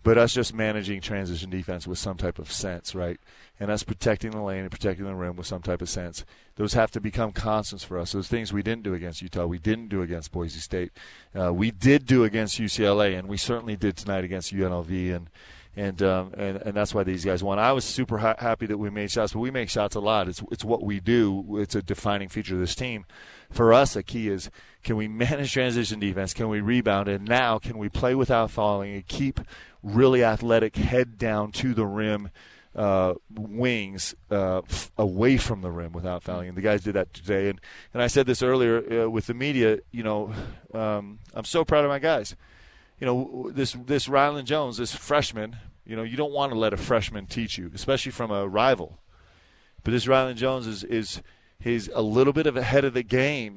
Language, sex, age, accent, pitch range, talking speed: English, male, 30-49, American, 95-120 Hz, 220 wpm